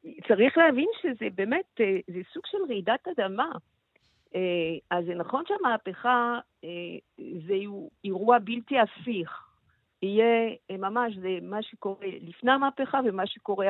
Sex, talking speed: female, 115 wpm